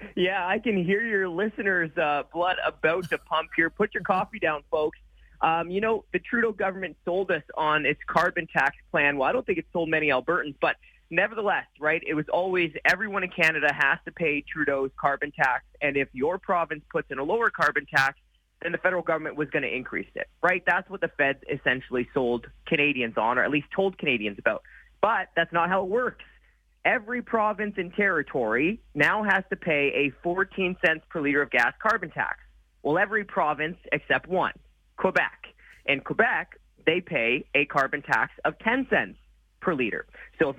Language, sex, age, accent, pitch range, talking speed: English, male, 20-39, American, 145-195 Hz, 190 wpm